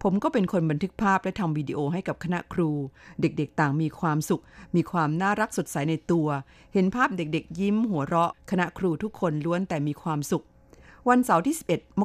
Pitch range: 150-195 Hz